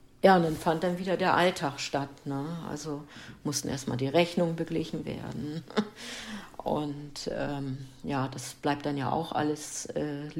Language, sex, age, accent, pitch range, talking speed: German, female, 60-79, German, 140-155 Hz, 155 wpm